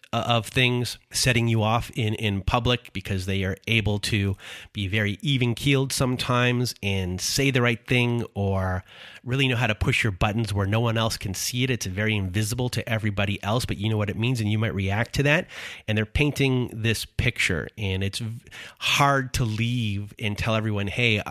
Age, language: 30-49, English